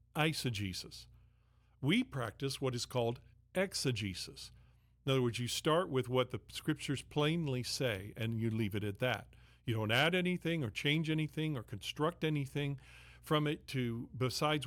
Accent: American